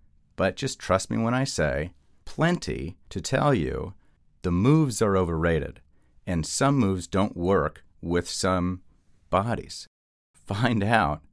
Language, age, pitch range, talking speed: English, 40-59, 75-105 Hz, 130 wpm